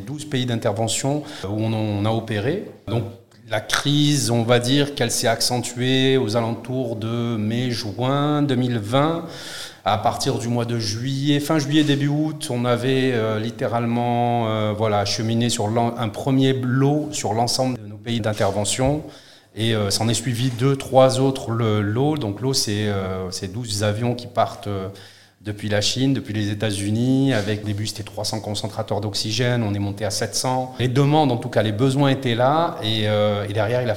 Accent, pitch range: French, 105-135 Hz